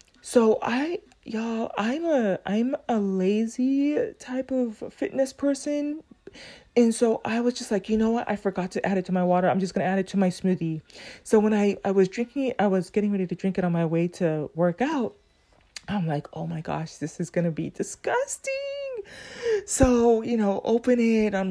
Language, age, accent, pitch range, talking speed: English, 30-49, American, 175-230 Hz, 205 wpm